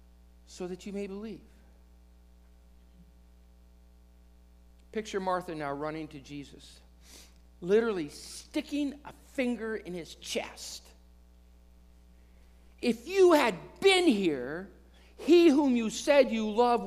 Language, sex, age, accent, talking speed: English, male, 50-69, American, 105 wpm